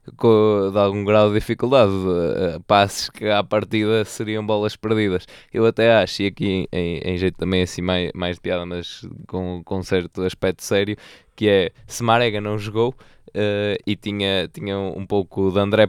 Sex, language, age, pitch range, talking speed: male, Portuguese, 20-39, 95-110 Hz, 180 wpm